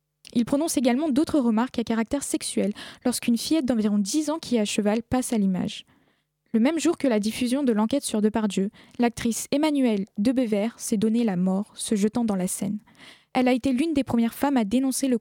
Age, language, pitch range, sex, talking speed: 10-29, French, 210-255 Hz, female, 205 wpm